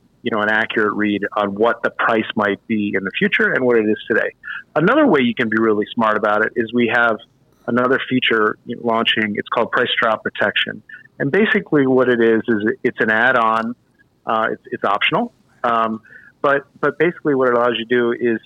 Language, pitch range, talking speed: English, 115-145 Hz, 205 wpm